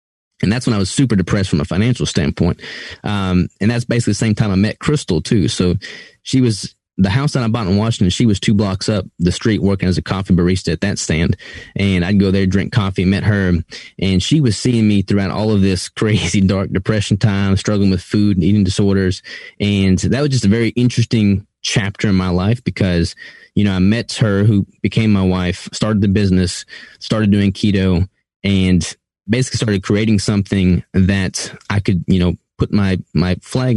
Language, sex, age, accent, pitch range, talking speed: English, male, 20-39, American, 95-110 Hz, 205 wpm